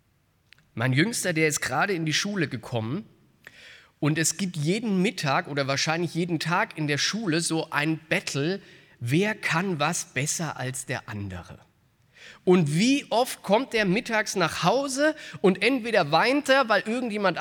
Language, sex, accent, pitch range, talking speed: German, male, German, 155-210 Hz, 155 wpm